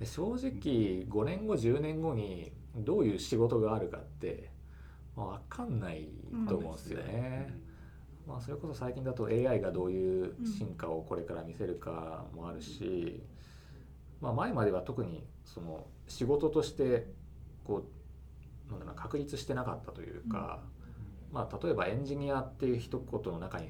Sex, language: male, Japanese